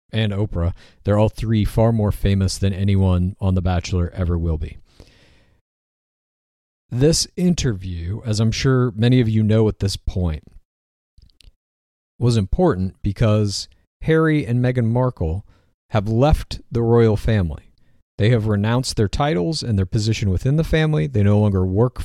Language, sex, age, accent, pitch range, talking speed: English, male, 40-59, American, 95-130 Hz, 150 wpm